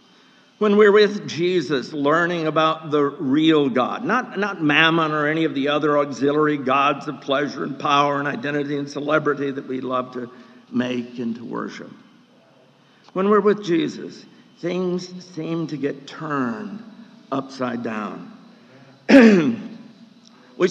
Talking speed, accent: 135 wpm, American